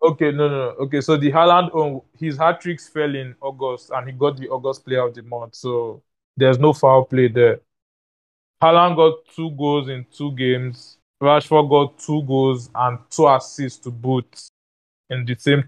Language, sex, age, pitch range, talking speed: English, male, 20-39, 125-150 Hz, 180 wpm